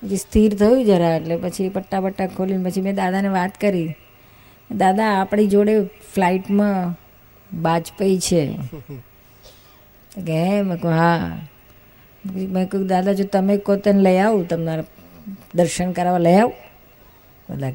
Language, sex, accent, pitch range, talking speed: Gujarati, female, native, 125-190 Hz, 120 wpm